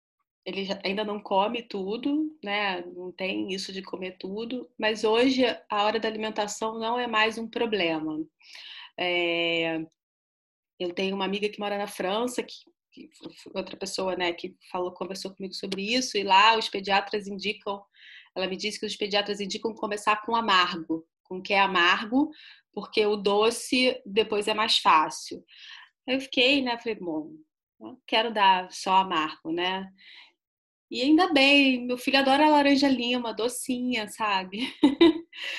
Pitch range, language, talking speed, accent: 190-255 Hz, Portuguese, 150 wpm, Brazilian